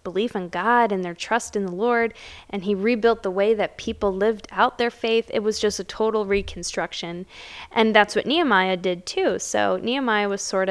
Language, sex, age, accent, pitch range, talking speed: English, female, 10-29, American, 185-230 Hz, 200 wpm